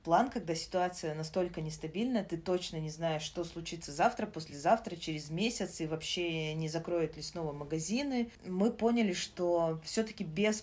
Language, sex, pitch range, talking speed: Russian, female, 160-190 Hz, 150 wpm